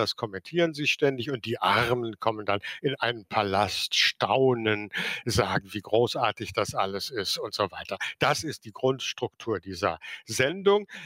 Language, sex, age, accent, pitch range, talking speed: German, male, 60-79, German, 110-150 Hz, 150 wpm